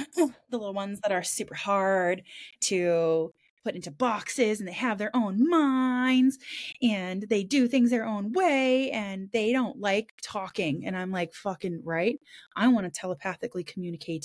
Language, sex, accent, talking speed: English, female, American, 165 wpm